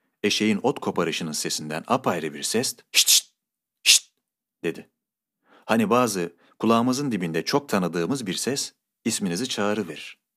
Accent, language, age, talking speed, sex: native, Turkish, 40-59, 120 wpm, male